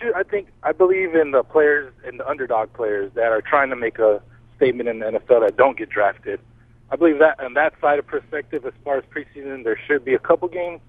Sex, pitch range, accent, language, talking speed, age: male, 115-145 Hz, American, English, 235 wpm, 40-59